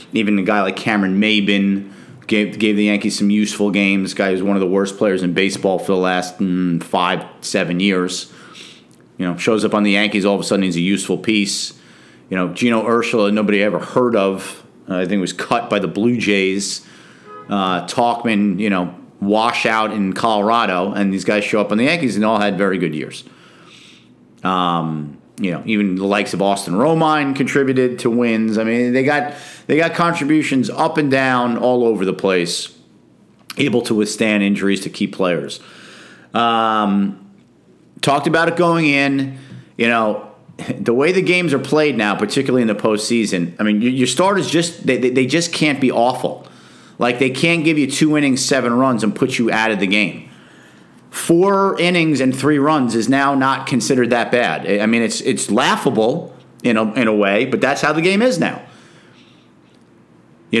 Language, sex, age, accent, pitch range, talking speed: English, male, 40-59, American, 100-140 Hz, 190 wpm